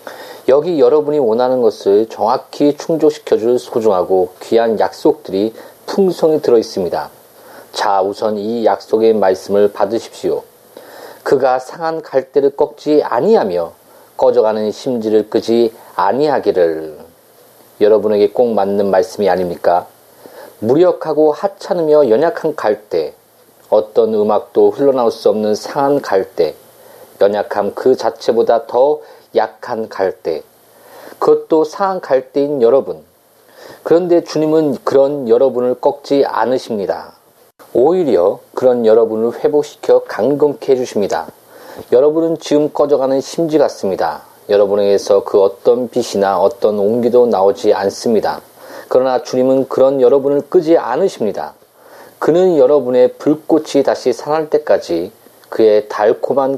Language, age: Korean, 40-59